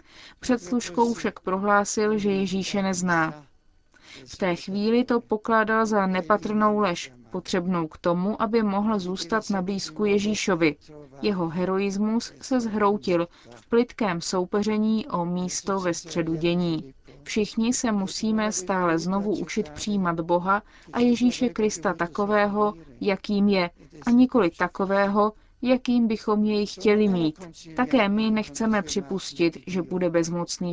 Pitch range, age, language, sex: 175-215 Hz, 20-39, Czech, female